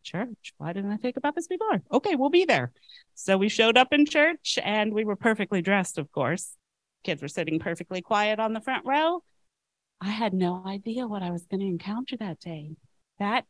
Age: 40-59